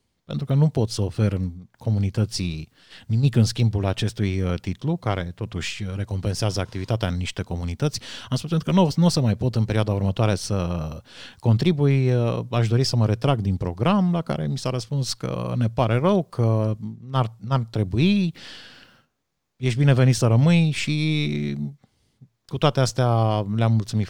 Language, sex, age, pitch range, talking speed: Romanian, male, 30-49, 100-130 Hz, 160 wpm